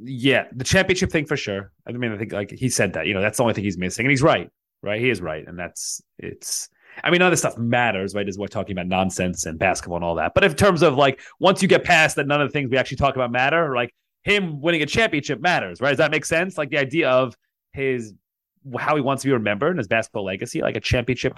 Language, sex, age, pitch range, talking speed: English, male, 30-49, 105-140 Hz, 280 wpm